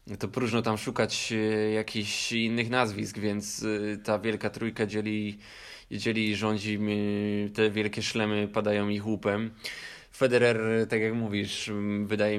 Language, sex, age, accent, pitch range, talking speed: Polish, male, 20-39, native, 105-110 Hz, 120 wpm